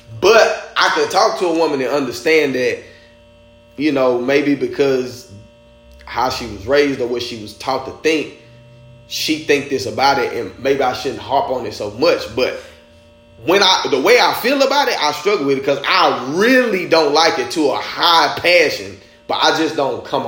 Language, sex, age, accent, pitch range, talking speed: English, male, 20-39, American, 115-145 Hz, 200 wpm